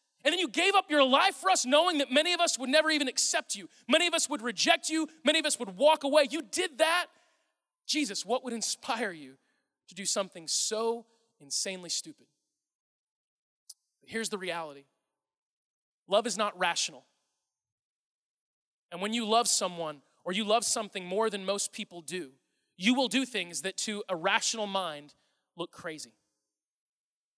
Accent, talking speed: American, 170 wpm